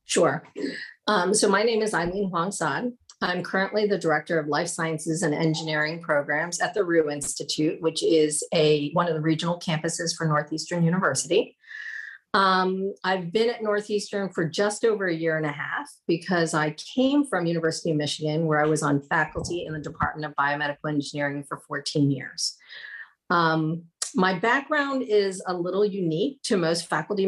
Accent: American